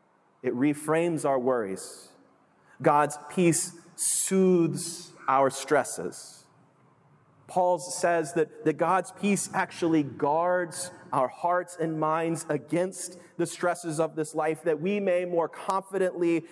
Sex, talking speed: male, 115 wpm